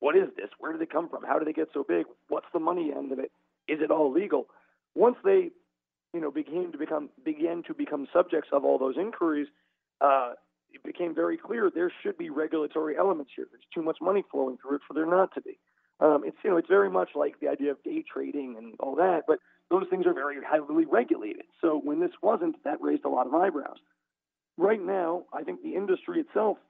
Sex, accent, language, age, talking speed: male, American, English, 40-59, 230 wpm